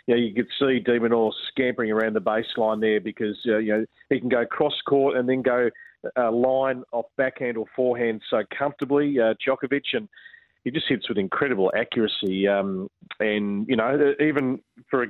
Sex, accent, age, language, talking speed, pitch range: male, Australian, 40-59, English, 180 wpm, 110-135 Hz